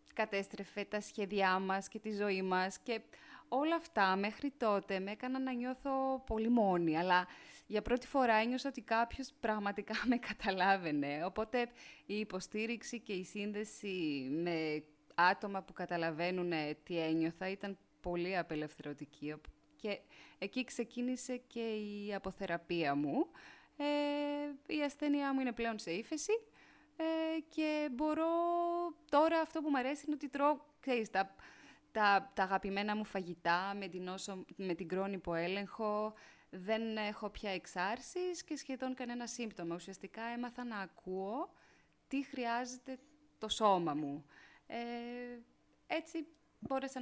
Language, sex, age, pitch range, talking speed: Greek, female, 20-39, 190-260 Hz, 130 wpm